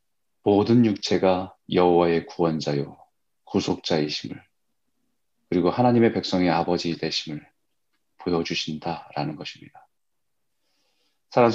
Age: 30-49